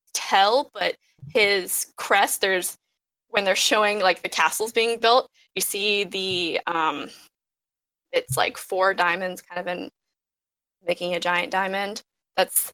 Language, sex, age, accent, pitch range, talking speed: English, female, 10-29, American, 190-245 Hz, 135 wpm